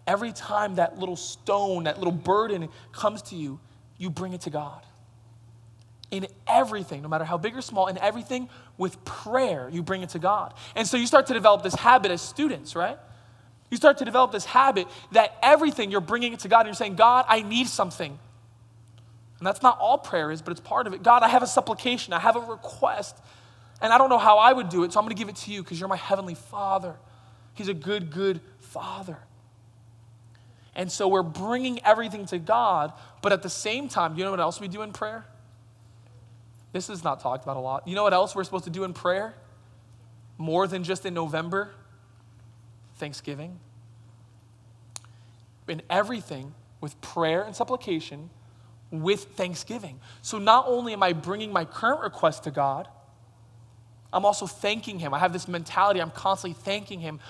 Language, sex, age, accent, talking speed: English, male, 20-39, American, 195 wpm